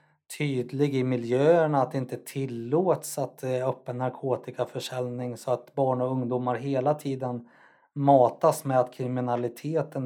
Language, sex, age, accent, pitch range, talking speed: Swedish, male, 30-49, native, 125-145 Hz, 135 wpm